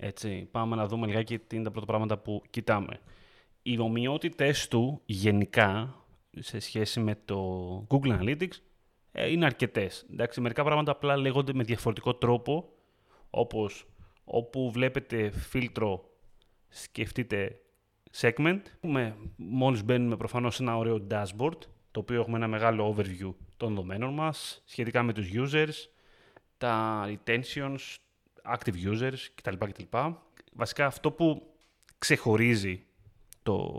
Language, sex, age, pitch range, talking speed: Greek, male, 30-49, 110-145 Hz, 120 wpm